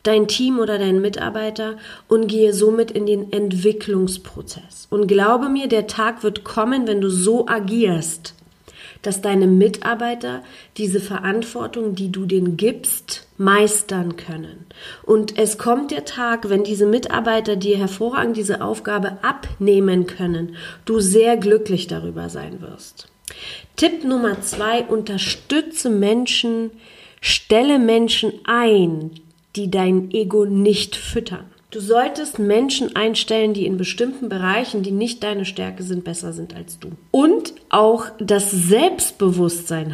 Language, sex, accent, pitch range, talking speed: German, female, German, 185-225 Hz, 130 wpm